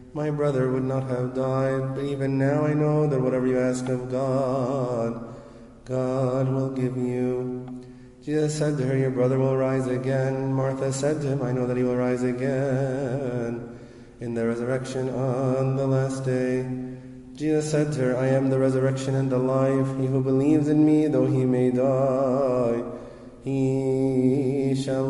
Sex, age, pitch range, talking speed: male, 30-49, 130-135 Hz, 165 wpm